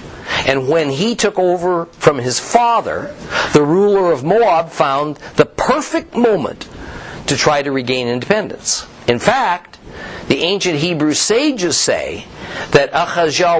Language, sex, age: English, male, 50-69